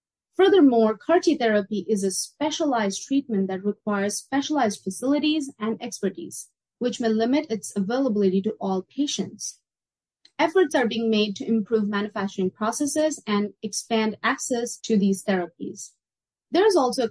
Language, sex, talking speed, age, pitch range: English, female, 135 wpm, 30-49, 200-275 Hz